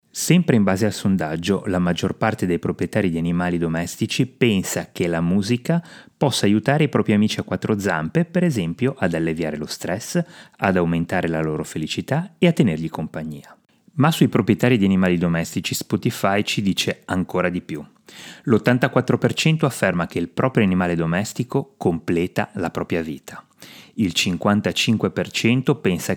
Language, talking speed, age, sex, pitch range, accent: Italian, 150 wpm, 30-49, male, 85-120 Hz, native